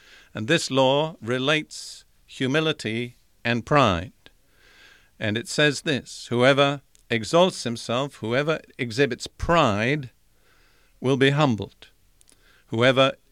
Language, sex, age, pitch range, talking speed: English, male, 50-69, 115-145 Hz, 95 wpm